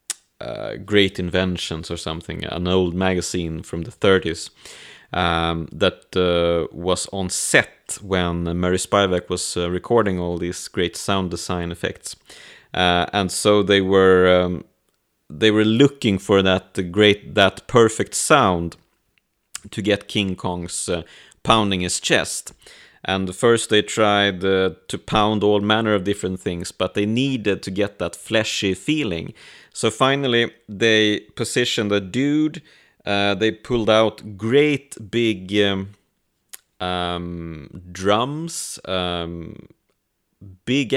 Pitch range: 90-110 Hz